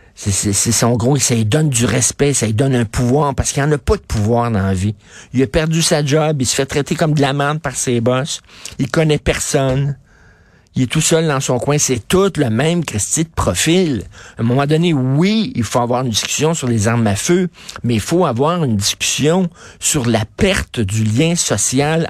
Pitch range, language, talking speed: 115-160 Hz, French, 230 wpm